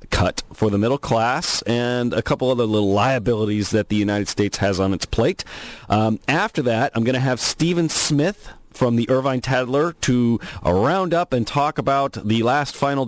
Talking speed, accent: 195 wpm, American